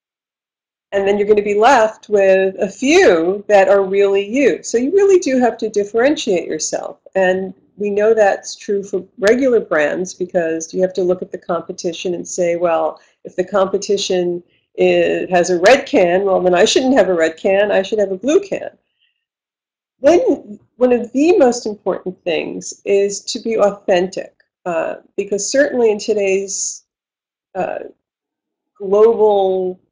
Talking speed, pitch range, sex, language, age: 160 wpm, 185-230 Hz, female, English, 50-69